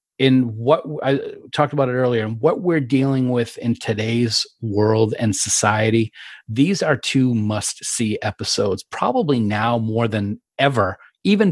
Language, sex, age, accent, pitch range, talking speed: English, male, 40-59, American, 110-130 Hz, 150 wpm